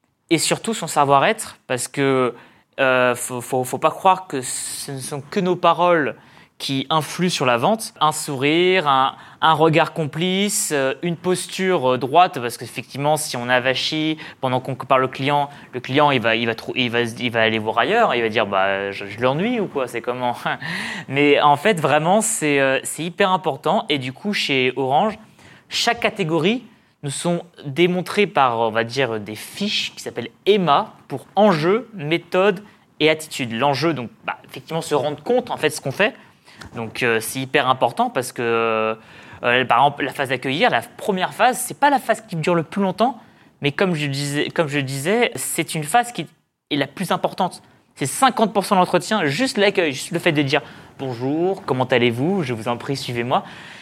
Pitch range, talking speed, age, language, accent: 130-185 Hz, 195 wpm, 20-39, French, French